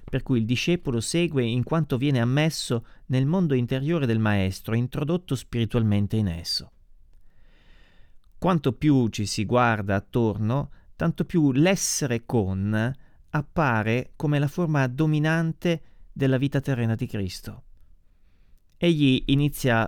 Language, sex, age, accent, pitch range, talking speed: Italian, male, 30-49, native, 110-145 Hz, 120 wpm